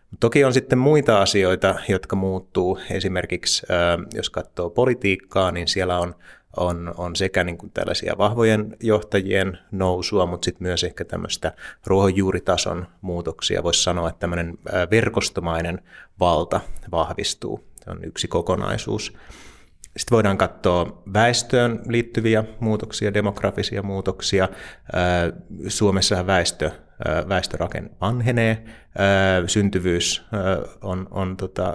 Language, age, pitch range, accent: Finnish, 30-49, 90-105 Hz, native